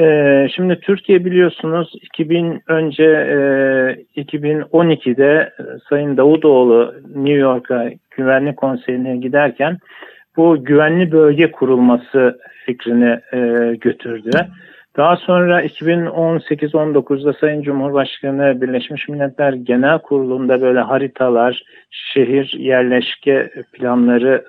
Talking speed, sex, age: 80 wpm, male, 50-69